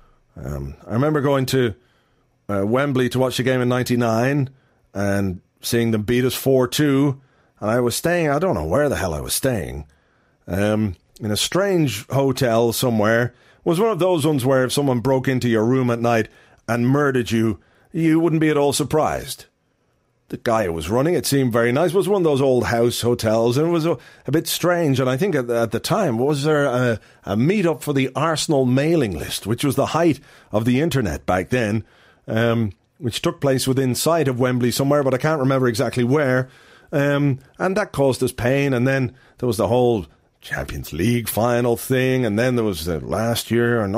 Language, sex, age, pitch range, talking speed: English, male, 40-59, 115-145 Hz, 205 wpm